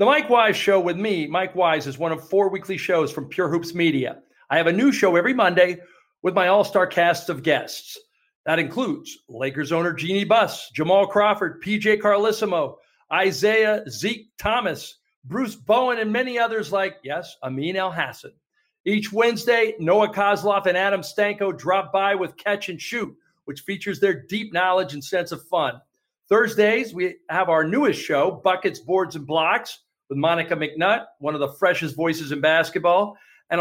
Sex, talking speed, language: male, 175 wpm, English